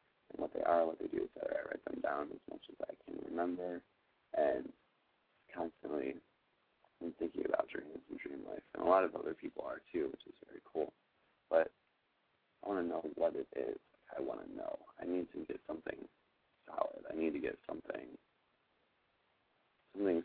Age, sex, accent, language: 40-59, male, American, English